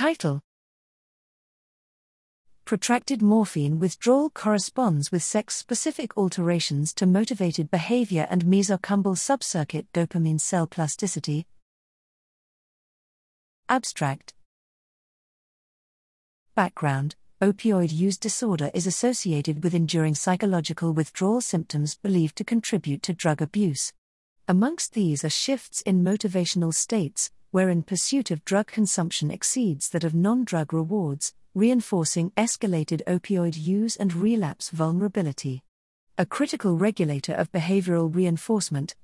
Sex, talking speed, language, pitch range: female, 100 wpm, English, 155-210 Hz